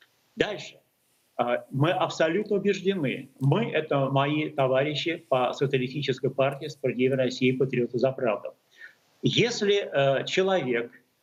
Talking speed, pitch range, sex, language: 95 wpm, 135-190 Hz, male, Russian